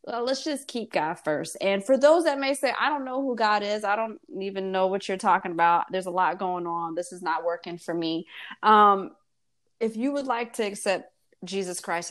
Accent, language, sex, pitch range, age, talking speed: American, English, female, 170-220 Hz, 20-39, 230 wpm